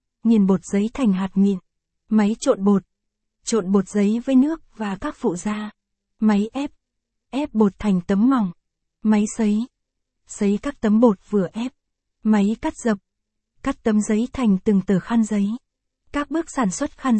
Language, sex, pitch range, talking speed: Vietnamese, female, 200-240 Hz, 170 wpm